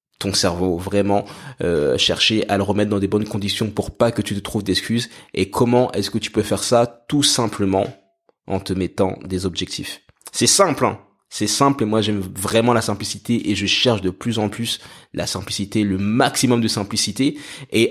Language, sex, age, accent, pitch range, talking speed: French, male, 20-39, French, 100-120 Hz, 200 wpm